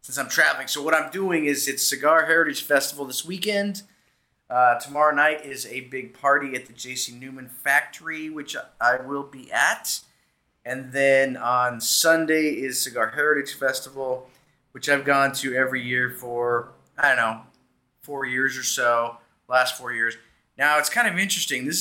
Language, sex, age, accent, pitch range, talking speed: English, male, 30-49, American, 125-150 Hz, 170 wpm